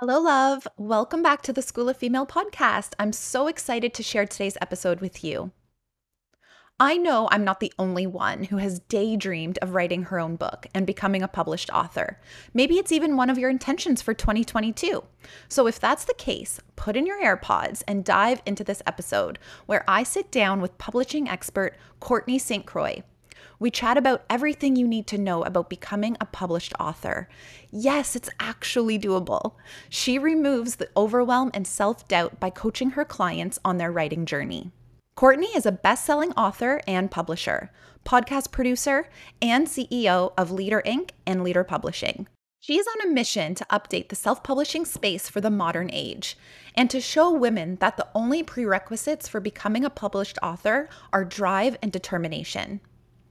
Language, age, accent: English, 20-39, American